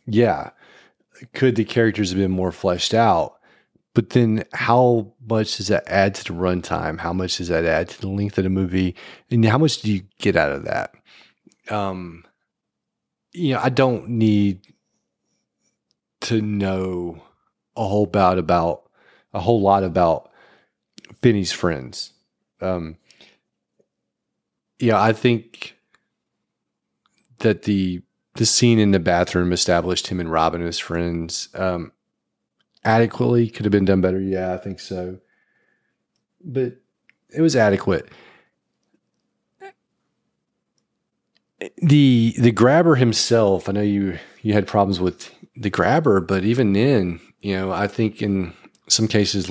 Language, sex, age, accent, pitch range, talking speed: English, male, 30-49, American, 90-115 Hz, 140 wpm